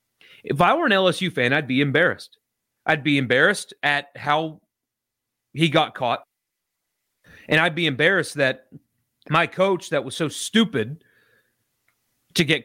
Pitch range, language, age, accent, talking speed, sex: 130-195 Hz, English, 30-49, American, 140 wpm, male